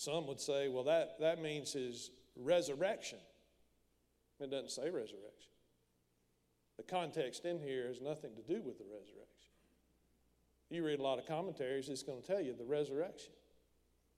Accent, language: American, English